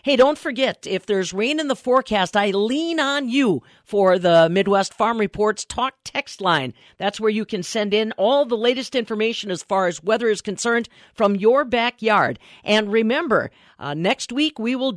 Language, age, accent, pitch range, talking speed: English, 40-59, American, 195-275 Hz, 190 wpm